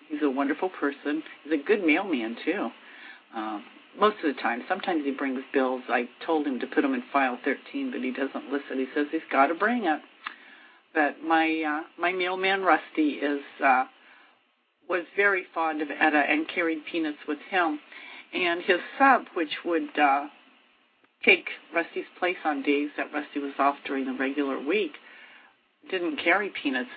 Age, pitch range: 50-69, 145-235 Hz